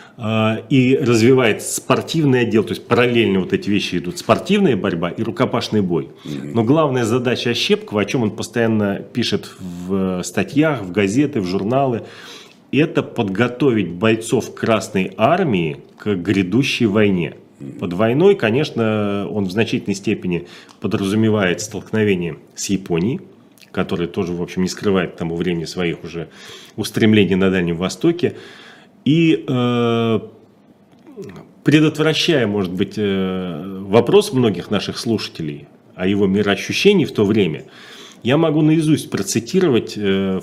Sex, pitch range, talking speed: male, 100-140 Hz, 125 wpm